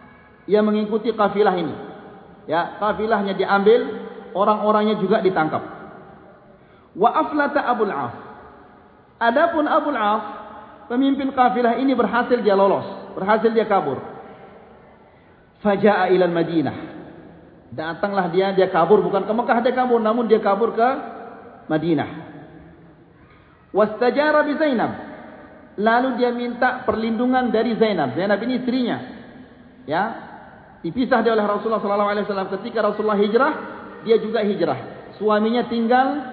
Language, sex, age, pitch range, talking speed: Malay, male, 40-59, 200-240 Hz, 115 wpm